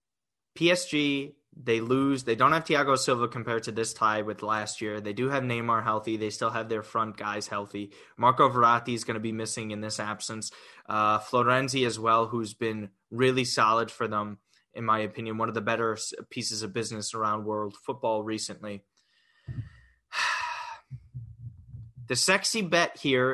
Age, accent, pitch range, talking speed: 20-39, American, 110-150 Hz, 165 wpm